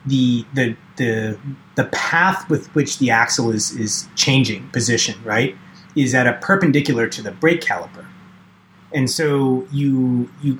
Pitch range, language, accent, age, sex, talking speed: 110-145 Hz, English, American, 30-49, male, 145 wpm